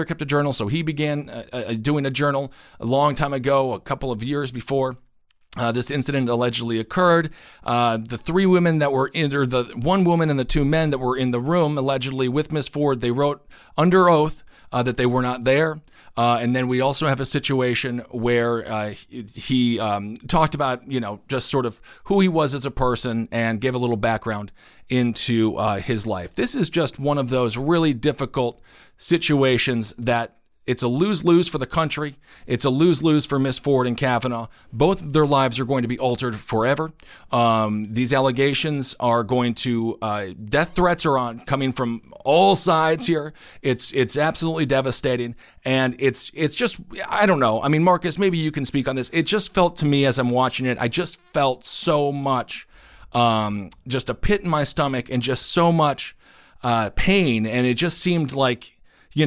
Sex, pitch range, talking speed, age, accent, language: male, 120-150 Hz, 195 wpm, 40-59, American, English